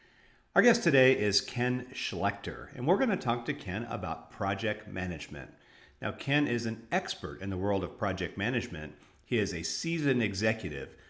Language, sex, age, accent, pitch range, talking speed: English, male, 50-69, American, 95-120 Hz, 175 wpm